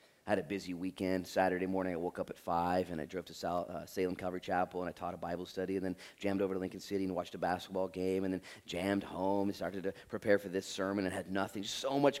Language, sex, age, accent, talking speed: English, male, 30-49, American, 275 wpm